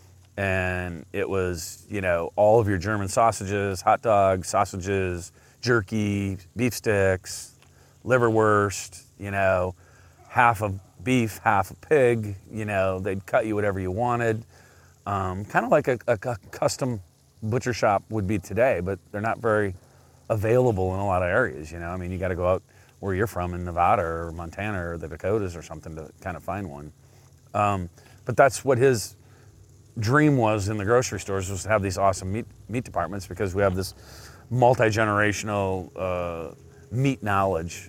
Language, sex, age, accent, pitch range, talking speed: English, male, 30-49, American, 95-110 Hz, 170 wpm